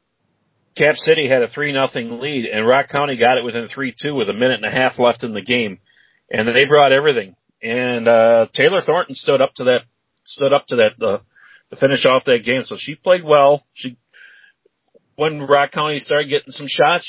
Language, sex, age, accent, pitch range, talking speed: English, male, 40-59, American, 130-170 Hz, 205 wpm